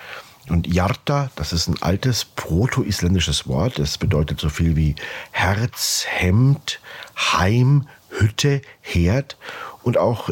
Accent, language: German, German